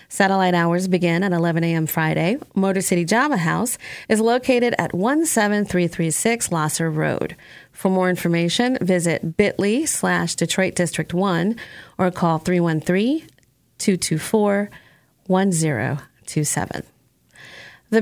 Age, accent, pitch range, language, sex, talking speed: 30-49, American, 170-205 Hz, English, female, 100 wpm